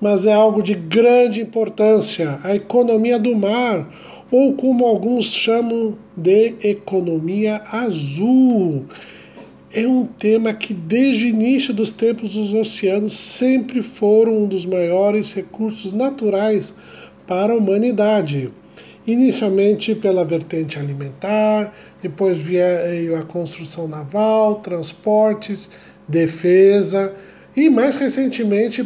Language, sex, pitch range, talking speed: Portuguese, male, 180-225 Hz, 110 wpm